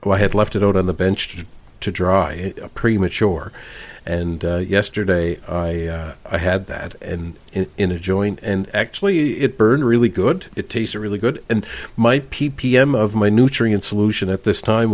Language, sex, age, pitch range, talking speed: English, male, 50-69, 95-110 Hz, 185 wpm